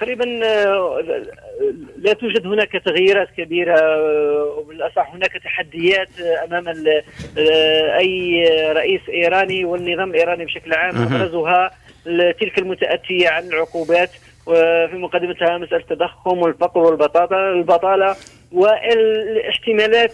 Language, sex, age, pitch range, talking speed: Arabic, male, 40-59, 170-205 Hz, 85 wpm